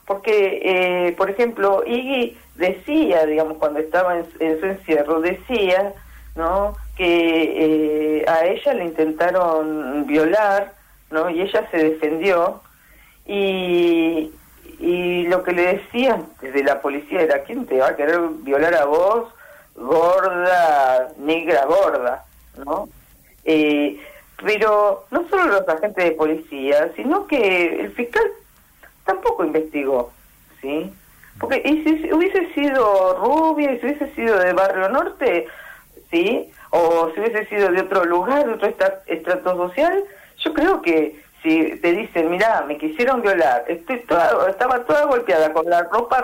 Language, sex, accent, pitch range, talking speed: Spanish, female, Argentinian, 160-255 Hz, 140 wpm